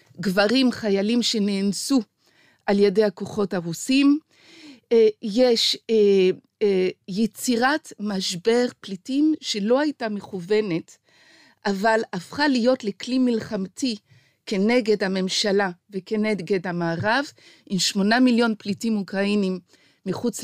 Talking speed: 85 wpm